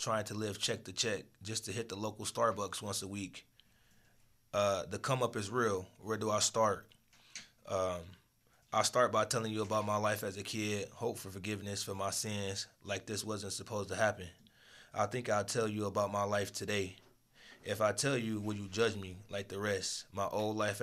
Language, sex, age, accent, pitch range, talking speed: English, male, 20-39, American, 100-110 Hz, 205 wpm